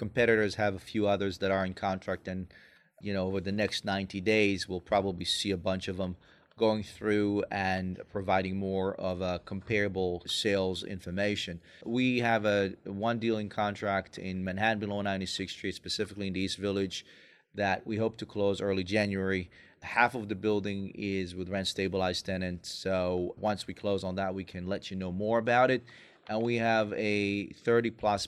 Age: 30-49